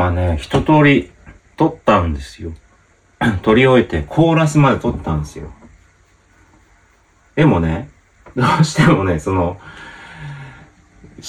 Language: Japanese